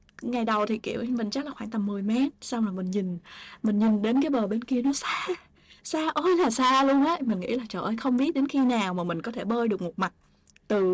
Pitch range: 210-270 Hz